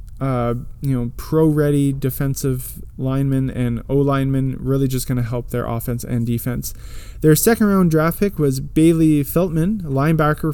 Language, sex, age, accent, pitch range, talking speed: English, male, 20-39, American, 130-160 Hz, 155 wpm